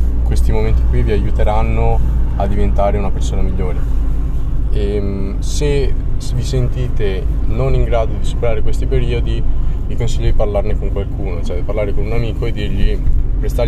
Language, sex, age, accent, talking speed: Italian, male, 20-39, native, 160 wpm